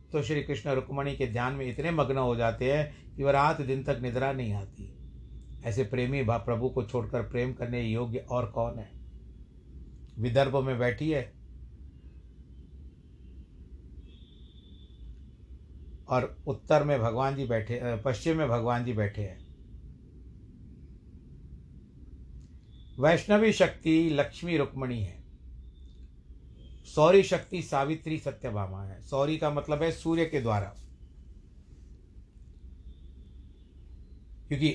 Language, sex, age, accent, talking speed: Hindi, male, 60-79, native, 110 wpm